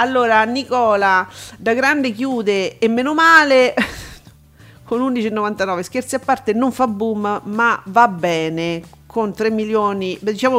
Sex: female